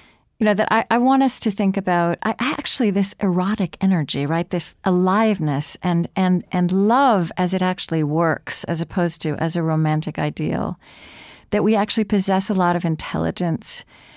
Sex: female